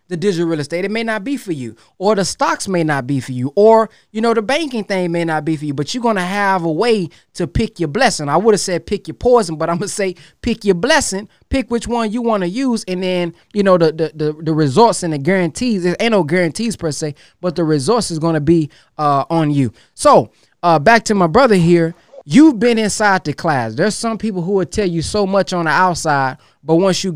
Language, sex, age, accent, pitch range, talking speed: English, male, 20-39, American, 160-215 Hz, 260 wpm